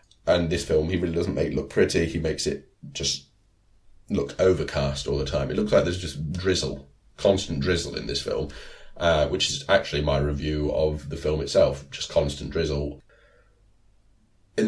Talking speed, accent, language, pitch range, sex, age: 180 wpm, British, English, 75-95 Hz, male, 30-49